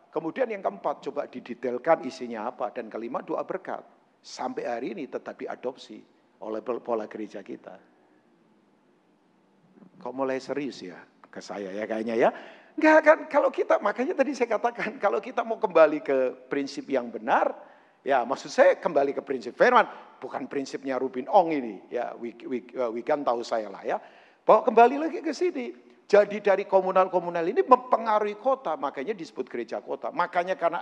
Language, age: Indonesian, 50-69